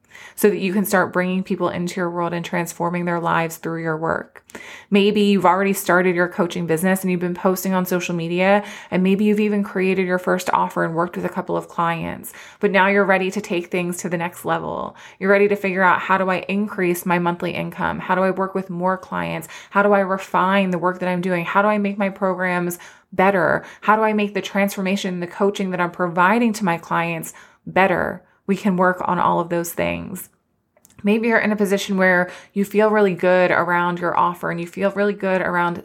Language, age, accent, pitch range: English, 20-39, American, 175-195 Hz